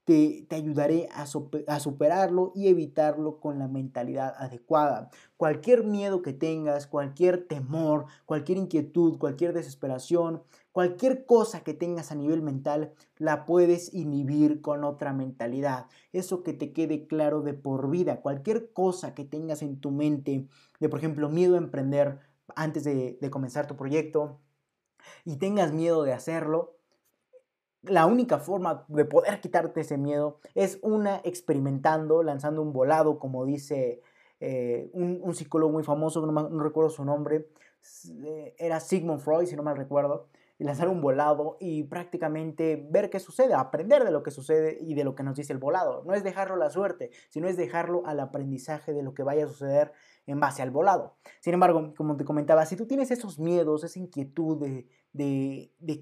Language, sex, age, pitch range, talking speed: Spanish, male, 20-39, 145-175 Hz, 170 wpm